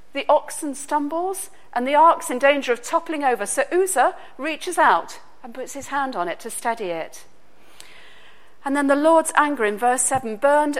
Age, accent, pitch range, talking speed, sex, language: 50-69, British, 235-340 Hz, 185 wpm, female, English